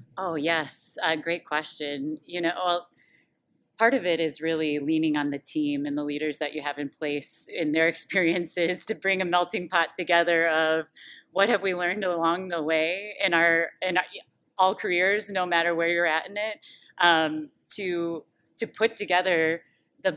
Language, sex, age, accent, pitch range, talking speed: English, female, 30-49, American, 155-185 Hz, 180 wpm